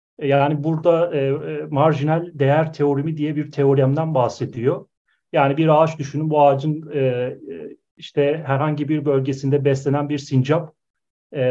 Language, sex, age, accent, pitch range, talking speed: Turkish, male, 40-59, native, 130-155 Hz, 130 wpm